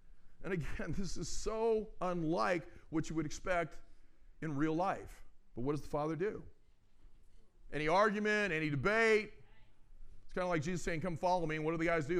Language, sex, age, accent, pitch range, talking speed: English, male, 40-59, American, 145-185 Hz, 185 wpm